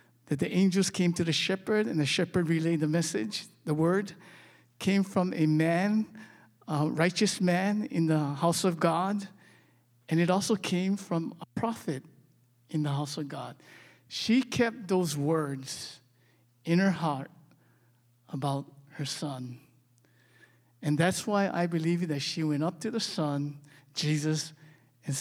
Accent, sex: American, male